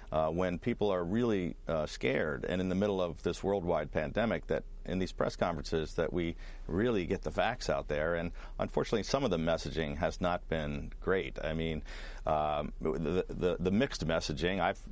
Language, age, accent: English, 50-69, American